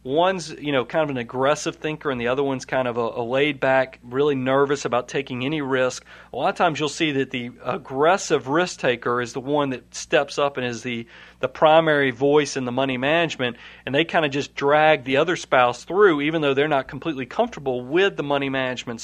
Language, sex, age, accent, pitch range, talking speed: English, male, 40-59, American, 130-155 Hz, 215 wpm